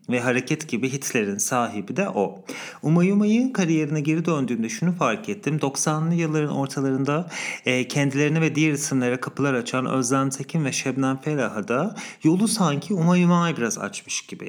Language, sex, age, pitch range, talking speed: English, male, 40-59, 125-175 Hz, 155 wpm